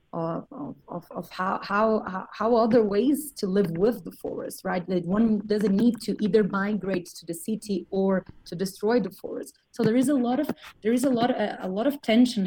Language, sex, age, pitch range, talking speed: English, female, 30-49, 175-220 Hz, 210 wpm